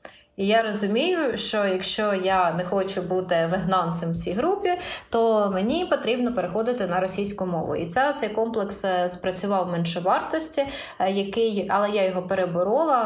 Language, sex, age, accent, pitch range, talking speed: Ukrainian, female, 20-39, native, 180-225 Hz, 145 wpm